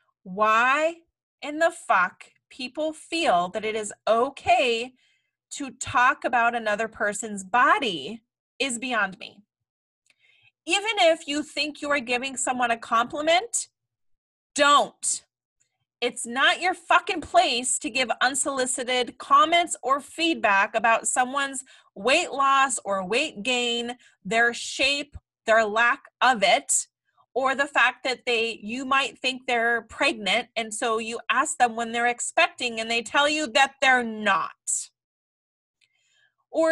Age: 30-49